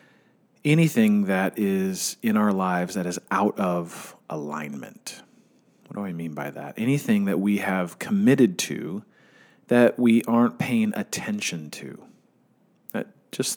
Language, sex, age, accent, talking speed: English, male, 40-59, American, 135 wpm